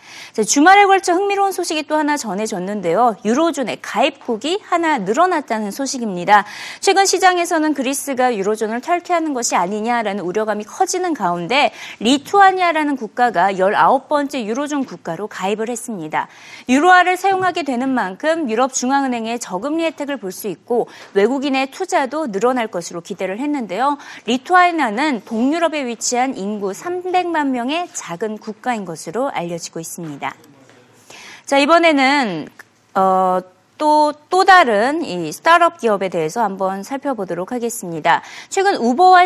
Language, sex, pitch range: Korean, female, 210-335 Hz